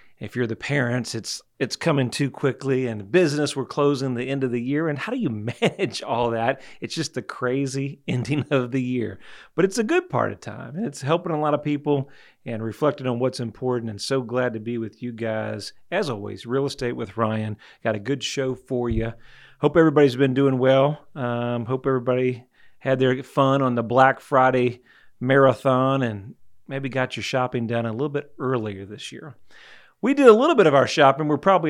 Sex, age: male, 40-59